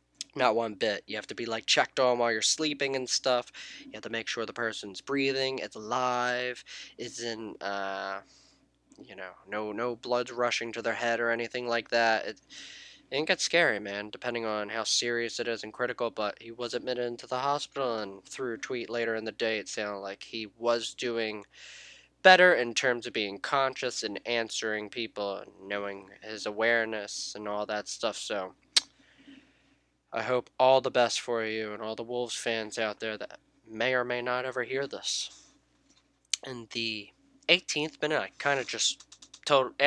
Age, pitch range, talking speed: 10-29, 105-125 Hz, 185 wpm